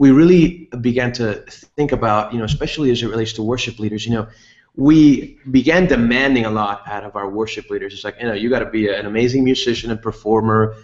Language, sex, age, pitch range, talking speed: English, male, 30-49, 105-130 Hz, 220 wpm